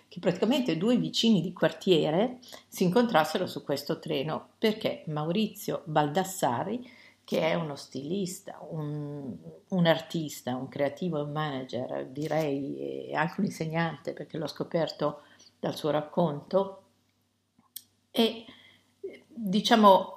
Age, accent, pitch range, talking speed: 50-69, native, 155-200 Hz, 115 wpm